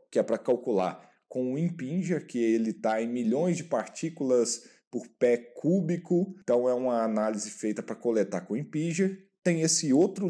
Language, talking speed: Portuguese, 175 wpm